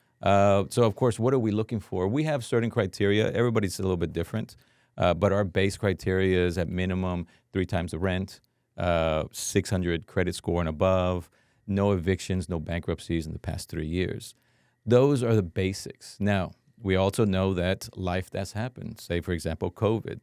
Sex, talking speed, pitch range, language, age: male, 180 wpm, 90-115 Hz, English, 40-59